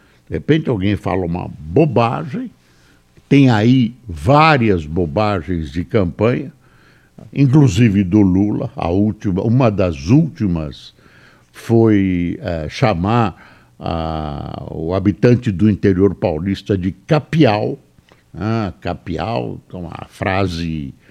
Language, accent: Portuguese, Brazilian